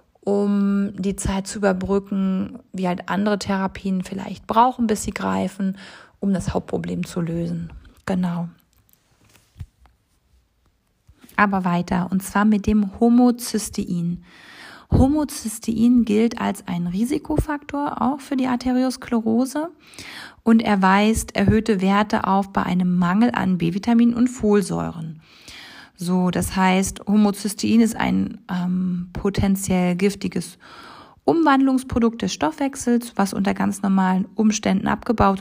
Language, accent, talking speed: German, German, 110 wpm